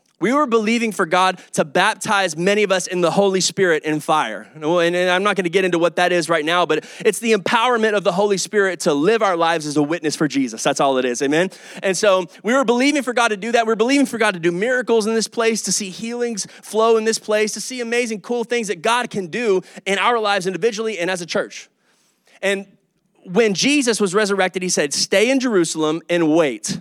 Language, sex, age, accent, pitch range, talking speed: English, male, 20-39, American, 185-250 Hz, 235 wpm